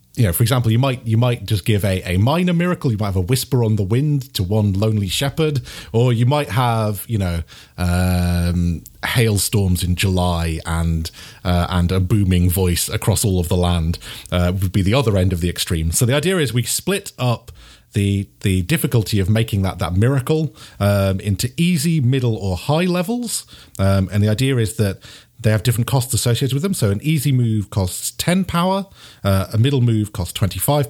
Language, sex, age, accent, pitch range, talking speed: English, male, 40-59, British, 95-130 Hz, 200 wpm